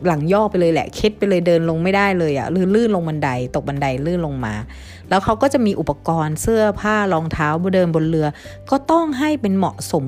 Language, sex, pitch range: Thai, female, 155-215 Hz